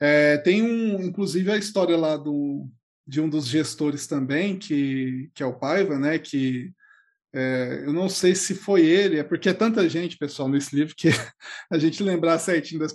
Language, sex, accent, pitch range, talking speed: Portuguese, male, Brazilian, 145-195 Hz, 190 wpm